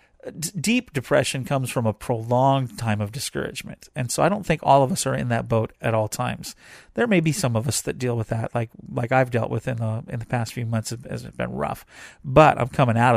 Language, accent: English, American